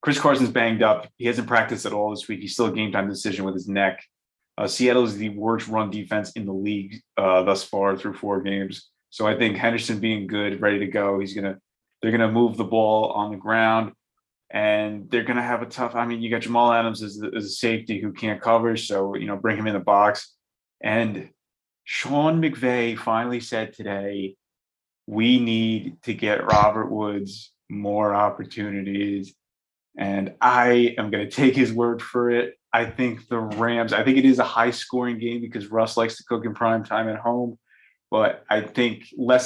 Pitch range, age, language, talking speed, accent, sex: 100-115 Hz, 30-49, English, 200 wpm, American, male